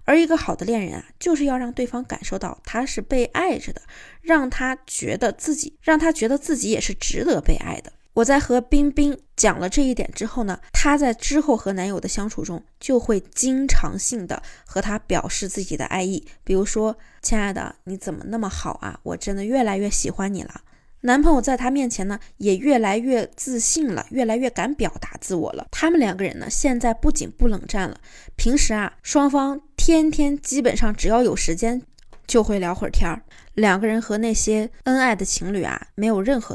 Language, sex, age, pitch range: Chinese, female, 20-39, 195-255 Hz